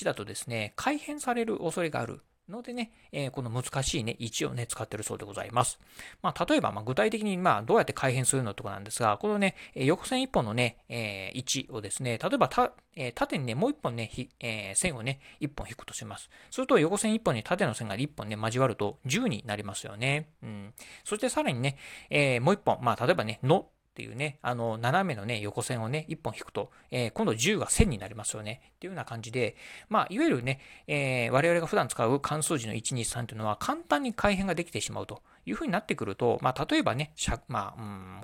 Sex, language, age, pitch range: male, Japanese, 40-59, 115-165 Hz